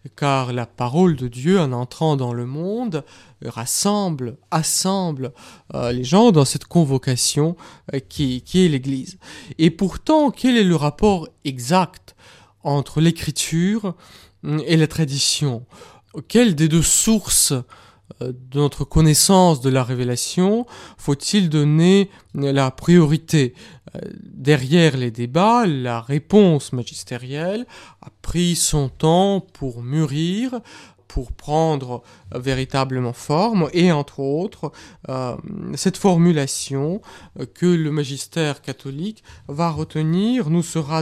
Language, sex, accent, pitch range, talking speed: French, male, French, 135-180 Hz, 115 wpm